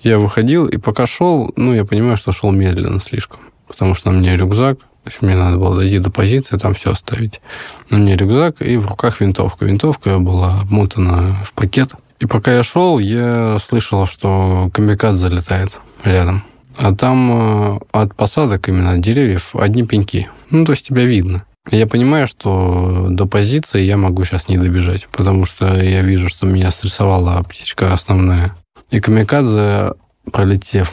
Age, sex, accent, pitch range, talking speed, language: 20-39, male, native, 95-120 Hz, 165 wpm, Russian